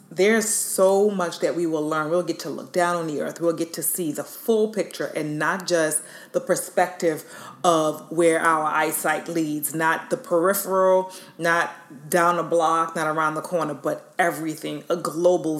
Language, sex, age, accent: English, female, 30-49, American